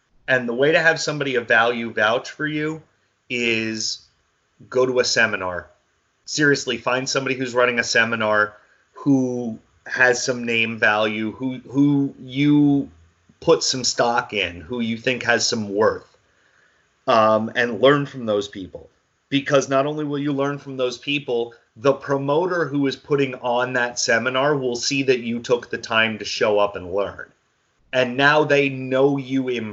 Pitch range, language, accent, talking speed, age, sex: 115-140 Hz, English, American, 165 wpm, 30-49, male